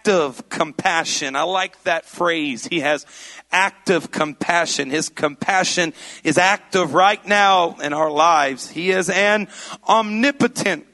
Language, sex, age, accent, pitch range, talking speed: English, male, 40-59, American, 170-225 Hz, 125 wpm